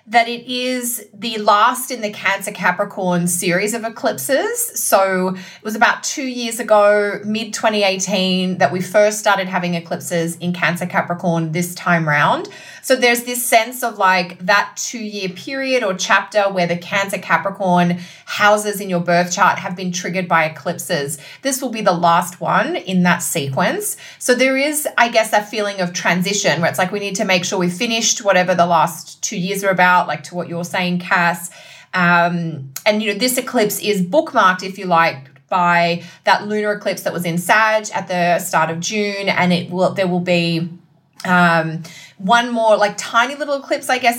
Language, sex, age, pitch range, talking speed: English, female, 20-39, 175-215 Hz, 185 wpm